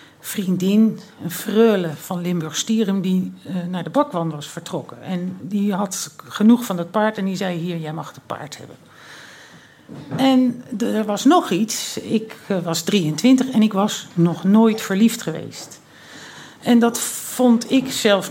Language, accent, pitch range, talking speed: Dutch, Dutch, 175-230 Hz, 160 wpm